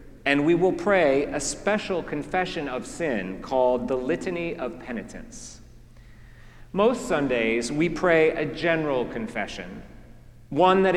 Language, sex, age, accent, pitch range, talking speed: English, male, 40-59, American, 120-180 Hz, 125 wpm